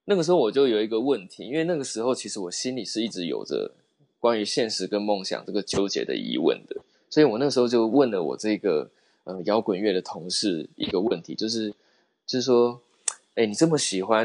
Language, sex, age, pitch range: Chinese, male, 20-39, 105-125 Hz